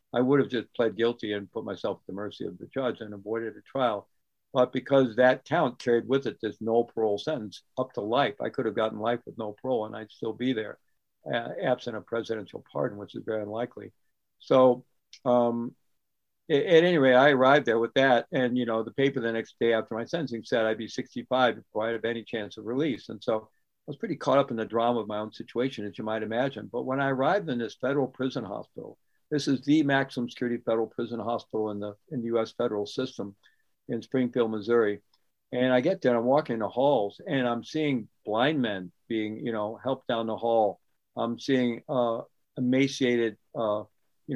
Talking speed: 215 wpm